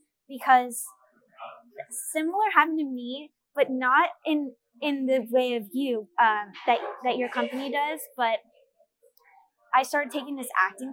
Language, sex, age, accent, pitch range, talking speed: English, female, 10-29, American, 220-270 Hz, 135 wpm